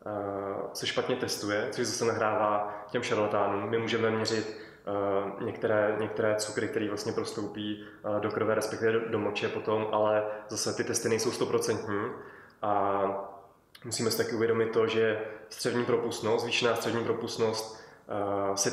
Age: 20-39